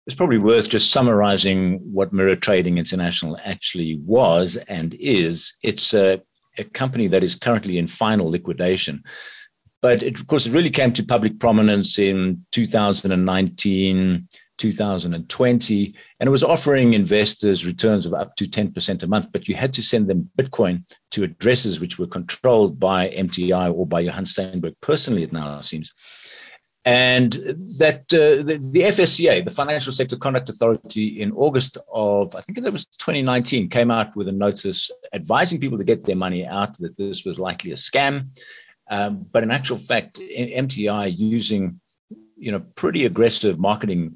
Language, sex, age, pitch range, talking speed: English, male, 50-69, 95-130 Hz, 160 wpm